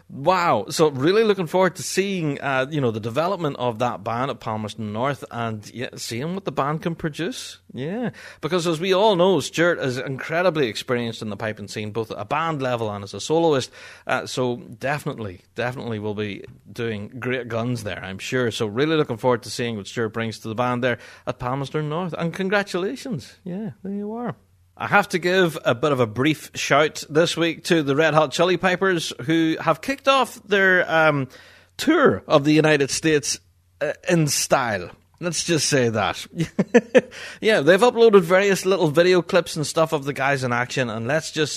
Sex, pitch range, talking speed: male, 115-170 Hz, 195 wpm